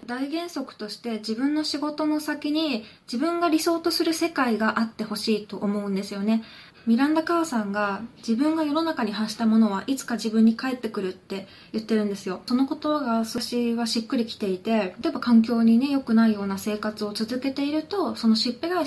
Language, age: Japanese, 20-39